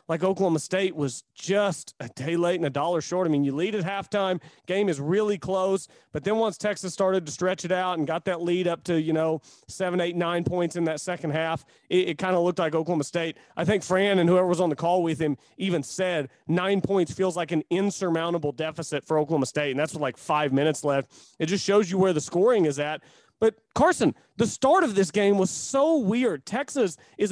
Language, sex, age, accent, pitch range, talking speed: English, male, 30-49, American, 160-200 Hz, 230 wpm